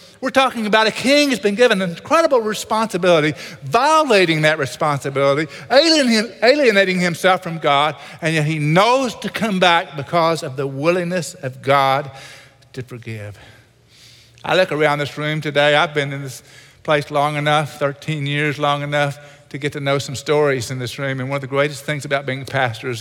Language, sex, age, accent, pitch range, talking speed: English, male, 50-69, American, 130-175 Hz, 185 wpm